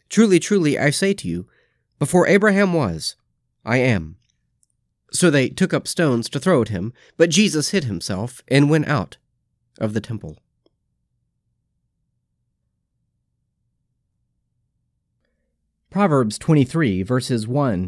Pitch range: 110-165 Hz